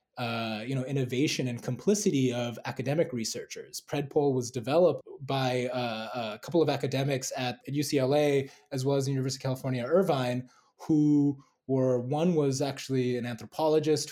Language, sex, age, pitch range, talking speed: English, male, 20-39, 120-140 Hz, 155 wpm